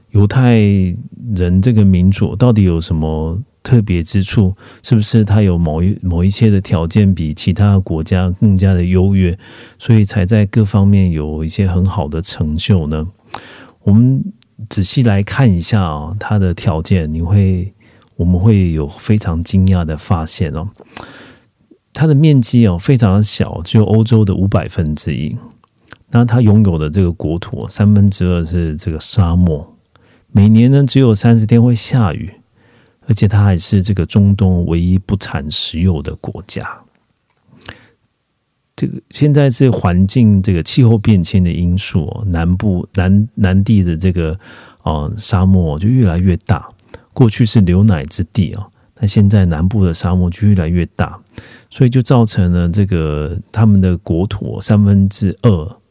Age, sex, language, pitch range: 40-59, male, Korean, 90-110 Hz